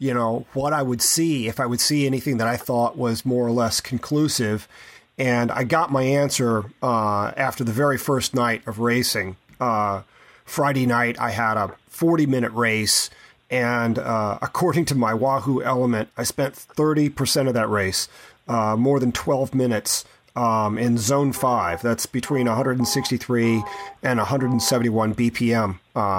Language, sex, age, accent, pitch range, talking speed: English, male, 30-49, American, 115-135 Hz, 165 wpm